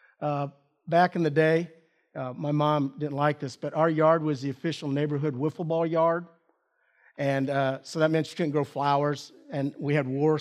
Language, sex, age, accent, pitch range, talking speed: English, male, 50-69, American, 150-190 Hz, 195 wpm